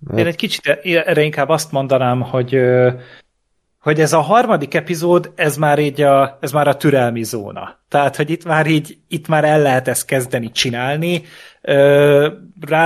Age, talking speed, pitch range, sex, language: 30-49, 165 wpm, 125-155 Hz, male, Hungarian